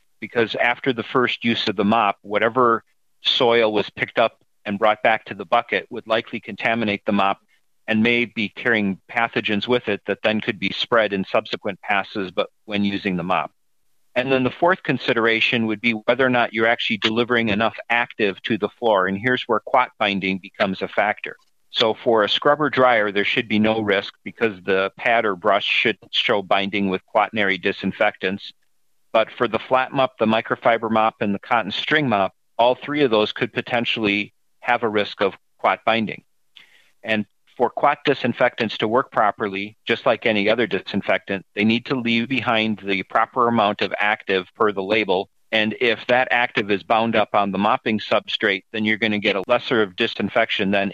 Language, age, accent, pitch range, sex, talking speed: English, 40-59, American, 100-120 Hz, male, 190 wpm